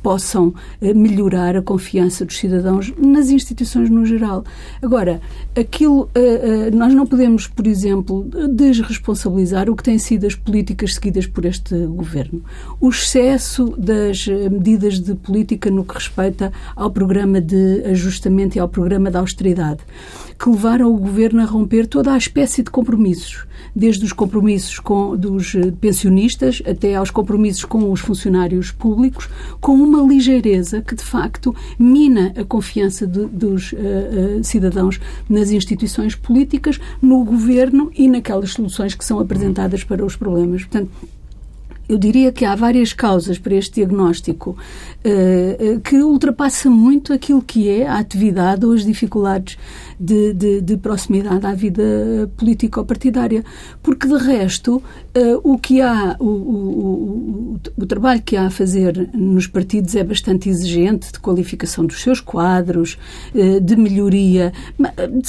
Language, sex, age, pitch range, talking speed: Portuguese, female, 50-69, 190-240 Hz, 140 wpm